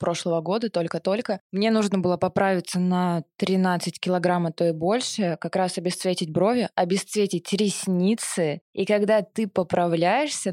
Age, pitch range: 20-39, 175-200 Hz